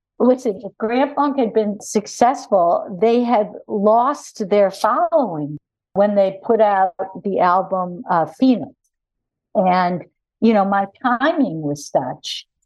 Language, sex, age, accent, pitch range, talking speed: English, female, 60-79, American, 170-215 Hz, 130 wpm